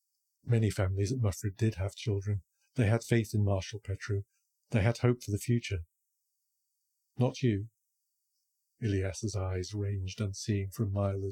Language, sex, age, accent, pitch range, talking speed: English, male, 50-69, British, 100-120 Hz, 145 wpm